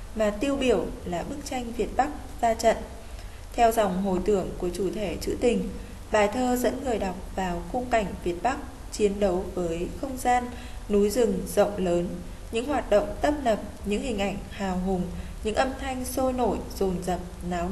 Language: Vietnamese